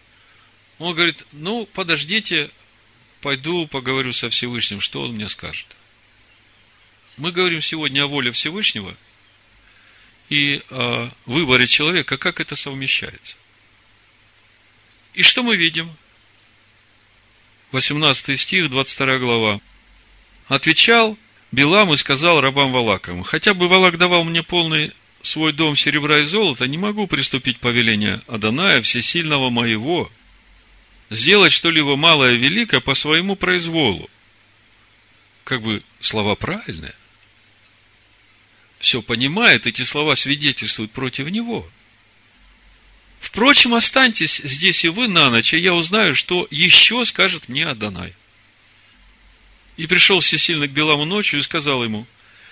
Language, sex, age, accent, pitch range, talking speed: Russian, male, 40-59, native, 110-165 Hz, 115 wpm